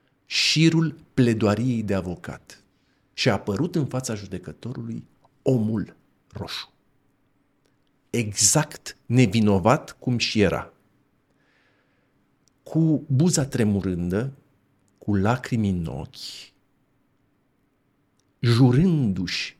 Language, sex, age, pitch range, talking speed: Romanian, male, 50-69, 100-140 Hz, 75 wpm